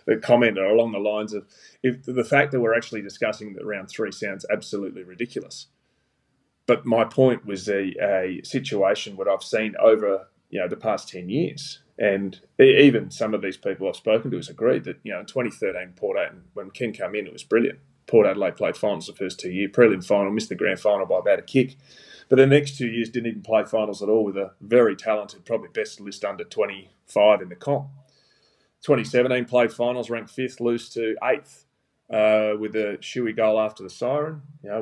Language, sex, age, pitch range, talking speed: English, male, 30-49, 105-130 Hz, 210 wpm